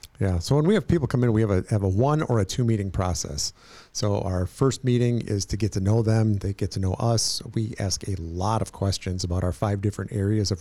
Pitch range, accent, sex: 95-115 Hz, American, male